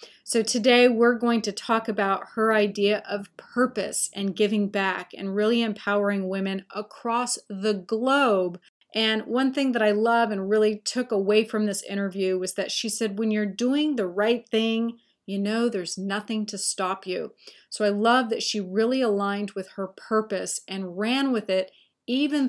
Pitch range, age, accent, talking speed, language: 200-235 Hz, 30-49, American, 175 wpm, English